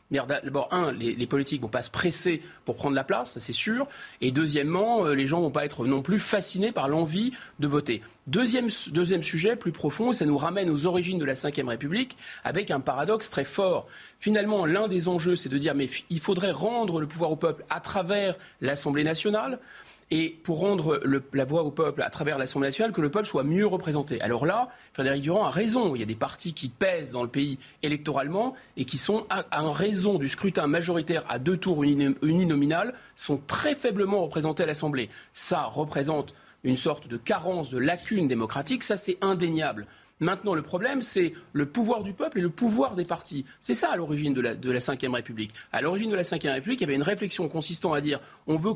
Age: 30-49